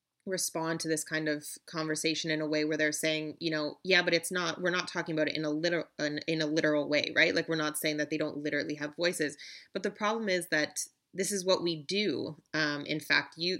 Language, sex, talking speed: English, female, 245 wpm